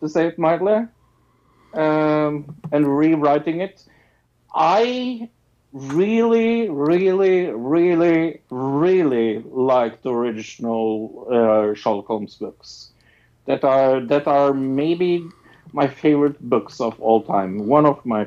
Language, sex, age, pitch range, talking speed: English, male, 50-69, 115-170 Hz, 110 wpm